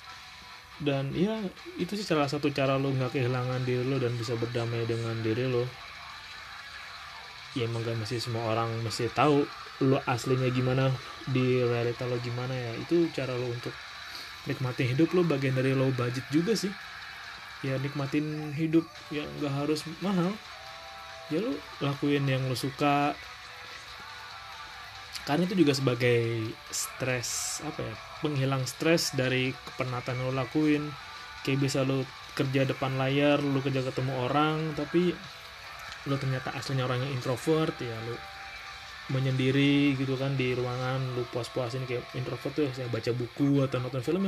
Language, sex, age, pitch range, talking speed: Indonesian, male, 20-39, 125-150 Hz, 150 wpm